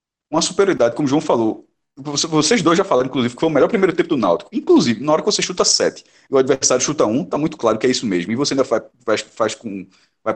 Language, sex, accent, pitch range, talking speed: Portuguese, male, Brazilian, 125-185 Hz, 260 wpm